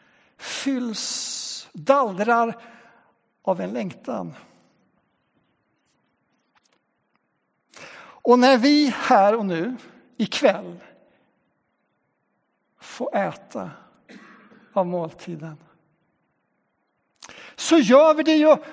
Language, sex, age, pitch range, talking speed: Swedish, male, 60-79, 190-250 Hz, 65 wpm